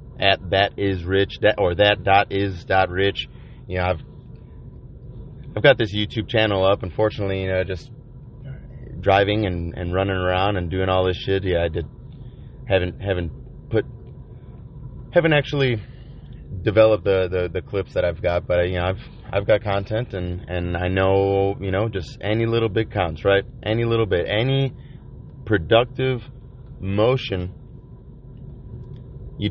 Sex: male